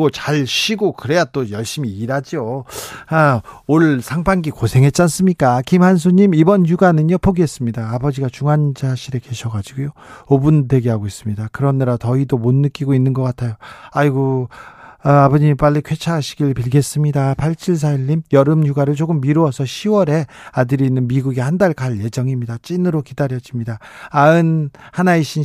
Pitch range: 130-165 Hz